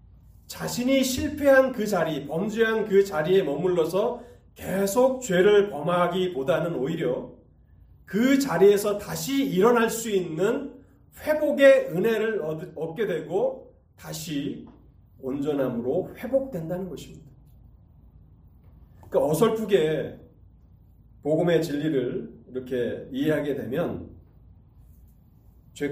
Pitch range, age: 120-190 Hz, 30-49